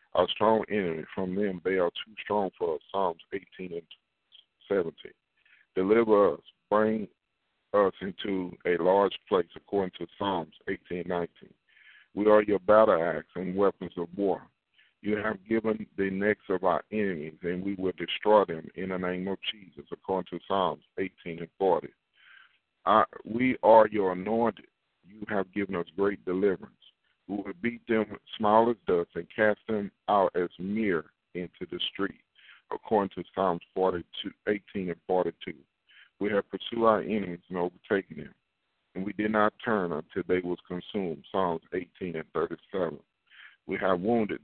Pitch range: 90-105 Hz